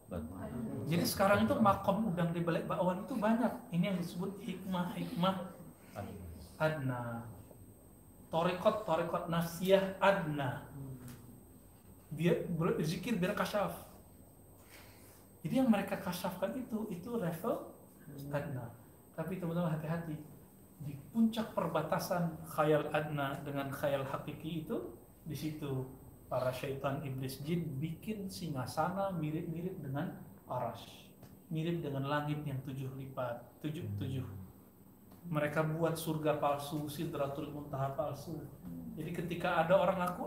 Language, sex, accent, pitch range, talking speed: Indonesian, male, native, 140-195 Hz, 110 wpm